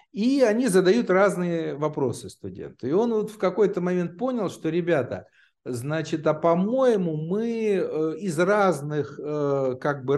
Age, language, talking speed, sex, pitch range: 50-69, Russian, 140 wpm, male, 130-185 Hz